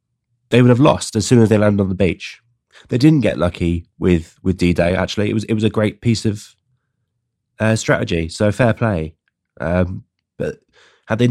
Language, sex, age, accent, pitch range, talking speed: English, male, 20-39, British, 90-120 Hz, 200 wpm